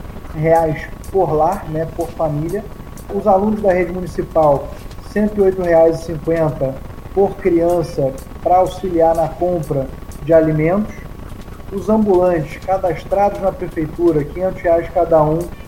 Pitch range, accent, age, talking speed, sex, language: 155-185 Hz, Brazilian, 20-39, 115 wpm, male, Portuguese